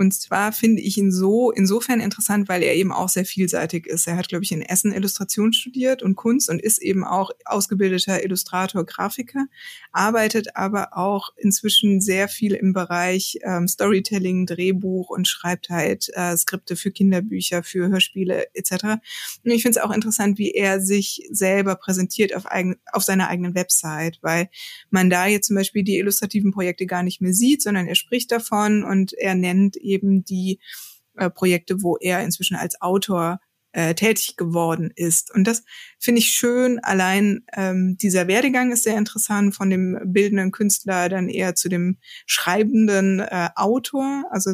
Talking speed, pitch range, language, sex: 170 wpm, 180-210 Hz, German, female